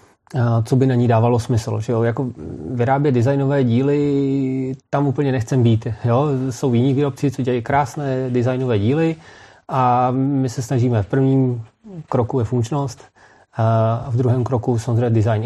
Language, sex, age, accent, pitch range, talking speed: Czech, male, 30-49, native, 110-130 Hz, 150 wpm